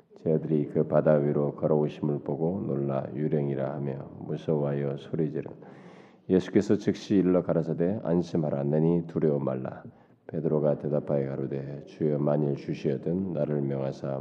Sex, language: male, Korean